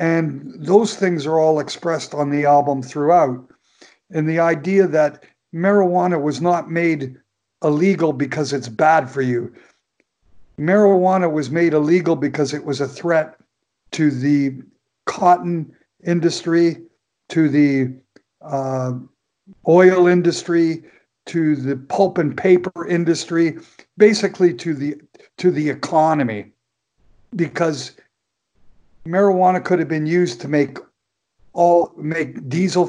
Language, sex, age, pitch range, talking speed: English, male, 60-79, 145-175 Hz, 120 wpm